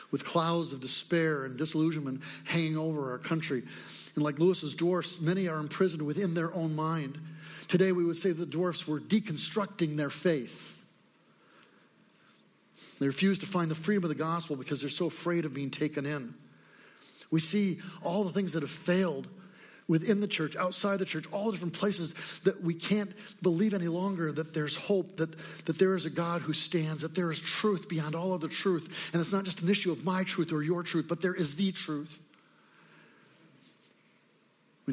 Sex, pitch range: male, 135-175 Hz